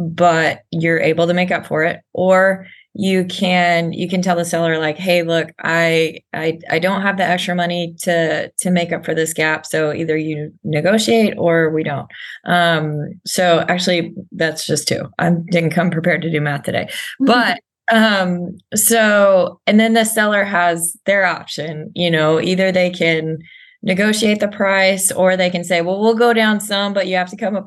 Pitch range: 165-195 Hz